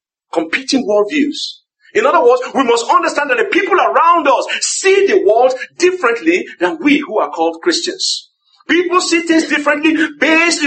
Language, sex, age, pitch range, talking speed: English, male, 50-69, 245-365 Hz, 165 wpm